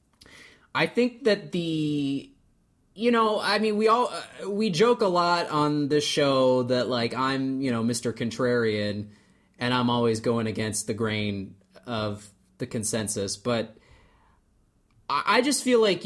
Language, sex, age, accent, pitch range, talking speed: English, male, 30-49, American, 110-145 Hz, 155 wpm